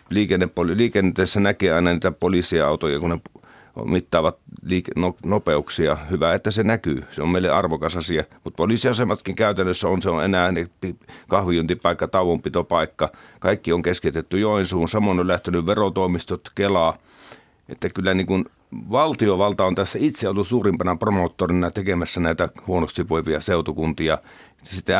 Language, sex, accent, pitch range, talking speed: Finnish, male, native, 85-100 Hz, 120 wpm